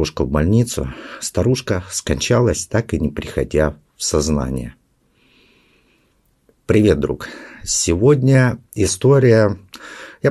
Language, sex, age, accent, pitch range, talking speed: Russian, male, 50-69, native, 80-125 Hz, 85 wpm